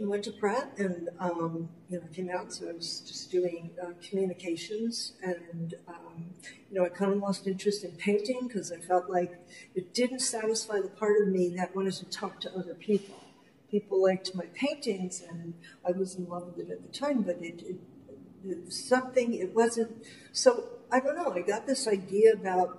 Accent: American